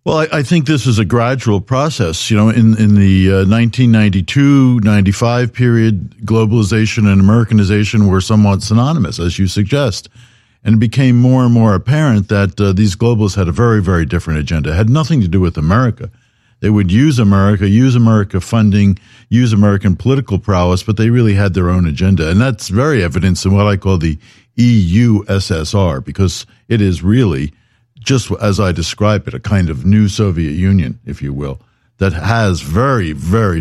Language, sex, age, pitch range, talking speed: English, male, 50-69, 95-120 Hz, 180 wpm